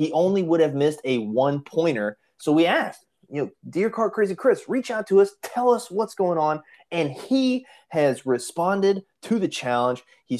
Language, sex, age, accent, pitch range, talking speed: English, male, 30-49, American, 135-175 Hz, 195 wpm